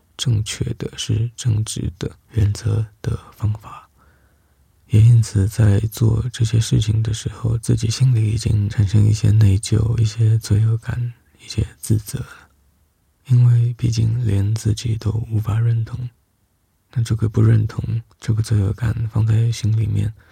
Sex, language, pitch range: male, Chinese, 100-115 Hz